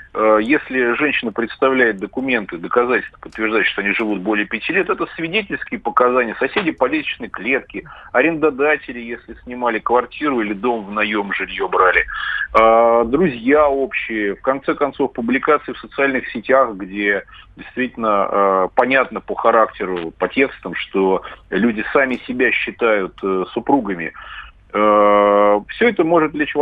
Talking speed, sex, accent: 130 wpm, male, native